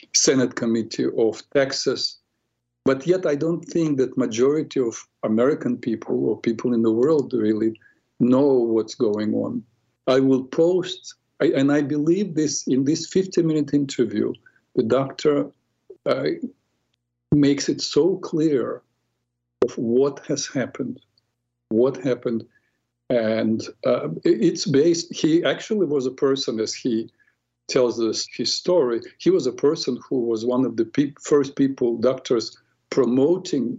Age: 50-69